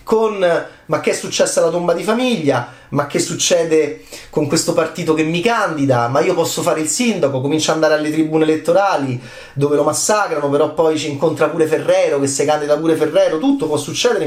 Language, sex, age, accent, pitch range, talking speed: Italian, male, 30-49, native, 140-180 Hz, 200 wpm